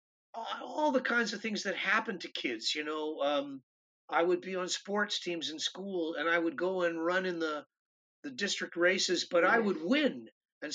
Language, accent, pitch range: English, American, 170-210 Hz